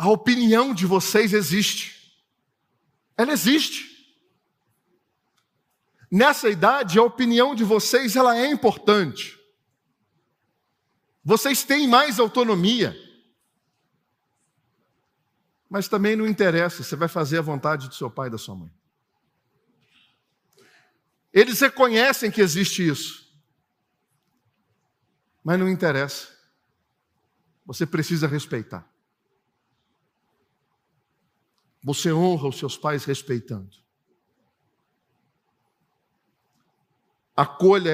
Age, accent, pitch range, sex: 50-69, Brazilian, 140-215 Hz, male